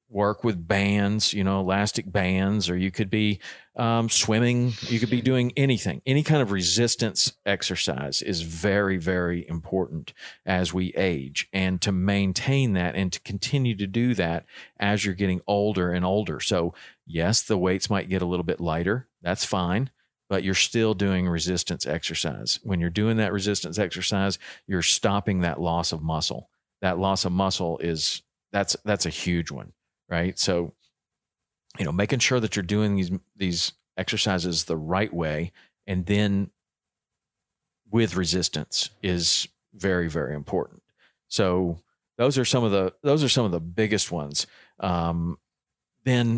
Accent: American